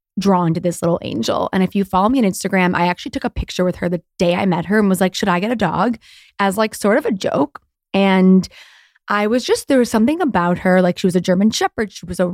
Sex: female